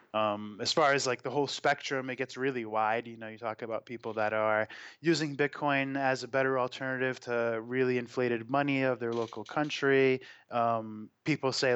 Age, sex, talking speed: 20-39, male, 190 wpm